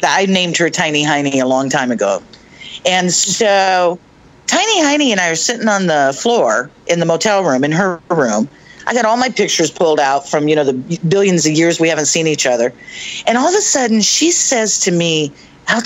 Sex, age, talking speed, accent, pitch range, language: female, 50-69, 210 wpm, American, 150-225 Hz, English